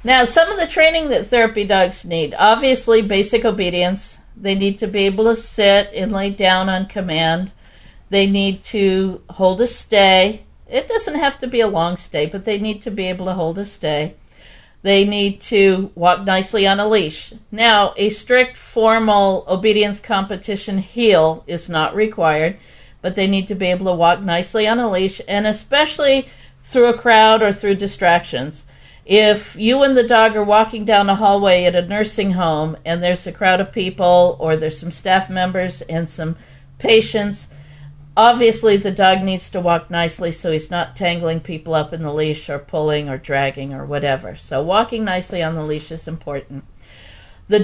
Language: English